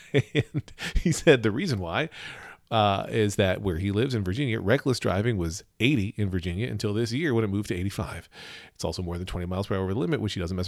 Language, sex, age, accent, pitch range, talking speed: English, male, 40-59, American, 95-115 Hz, 240 wpm